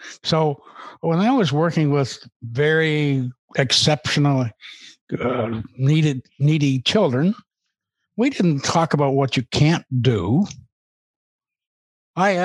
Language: English